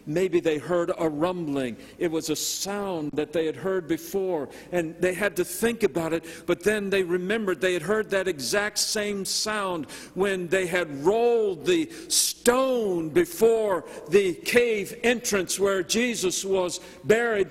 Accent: American